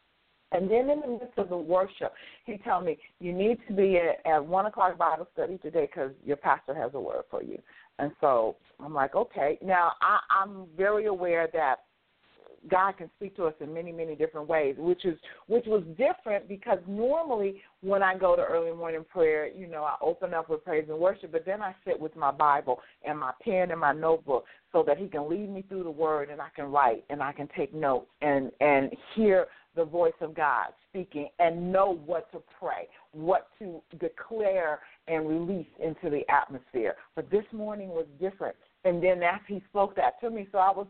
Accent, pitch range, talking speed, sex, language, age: American, 160-200 Hz, 205 wpm, female, English, 50-69